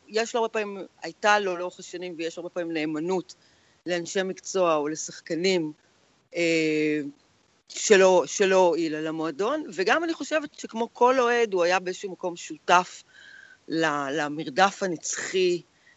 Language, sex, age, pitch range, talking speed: Hebrew, female, 40-59, 165-195 Hz, 130 wpm